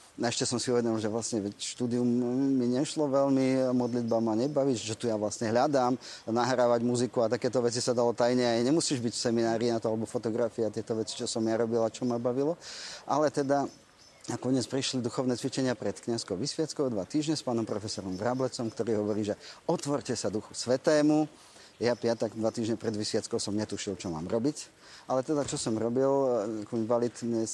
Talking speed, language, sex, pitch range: 185 wpm, Slovak, male, 110-130 Hz